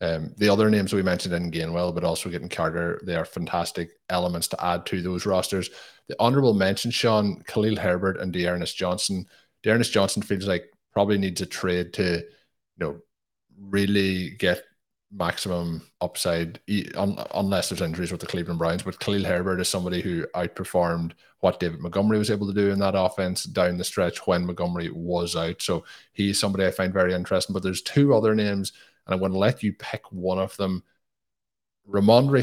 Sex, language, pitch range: male, English, 90-100 Hz